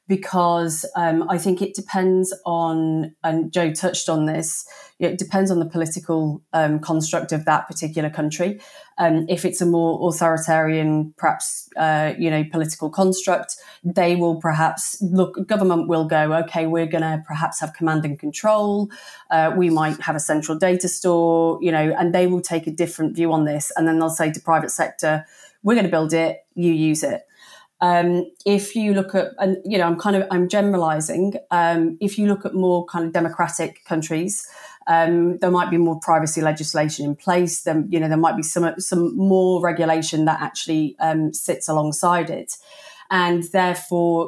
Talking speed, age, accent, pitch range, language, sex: 185 wpm, 30-49, British, 160-185 Hz, English, female